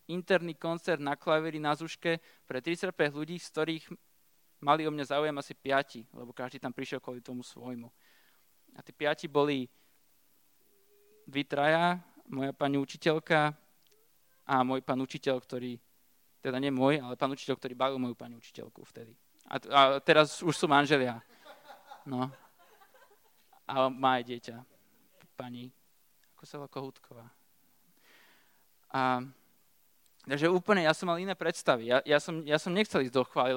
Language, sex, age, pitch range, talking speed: Slovak, male, 20-39, 130-165 Hz, 145 wpm